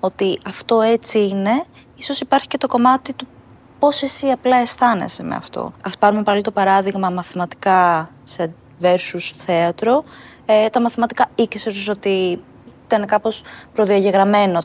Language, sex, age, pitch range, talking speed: Greek, female, 20-39, 190-255 Hz, 135 wpm